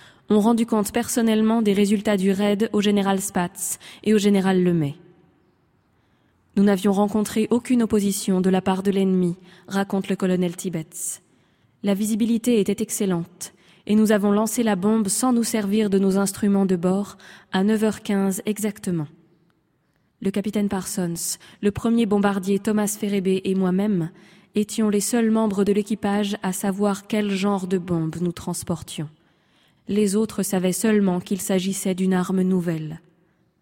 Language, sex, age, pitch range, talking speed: French, female, 20-39, 180-210 Hz, 155 wpm